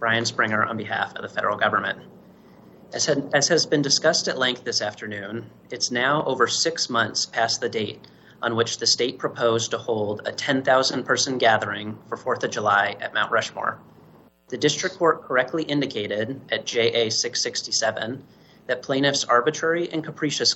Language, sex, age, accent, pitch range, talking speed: English, male, 30-49, American, 115-150 Hz, 160 wpm